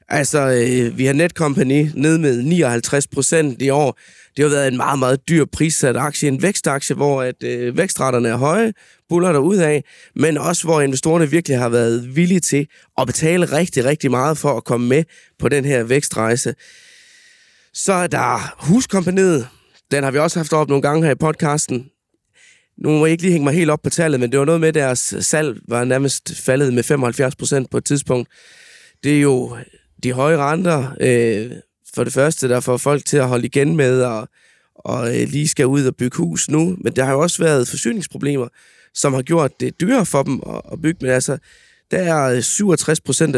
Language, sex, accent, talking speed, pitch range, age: Danish, male, native, 195 wpm, 130-160 Hz, 20-39